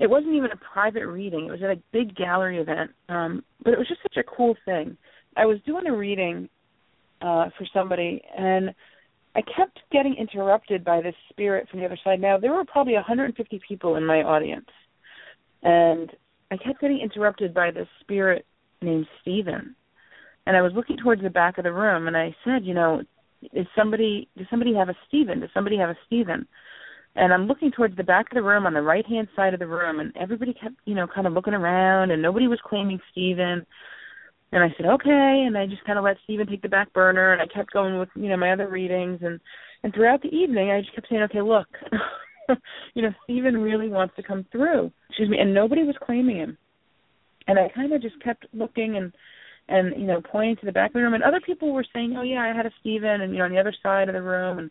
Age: 30-49